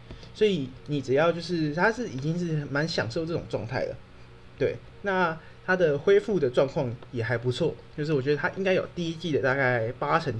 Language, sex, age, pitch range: Chinese, male, 20-39, 120-165 Hz